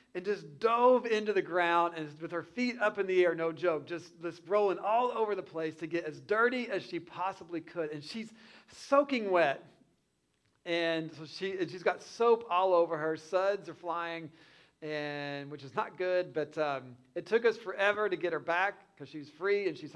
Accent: American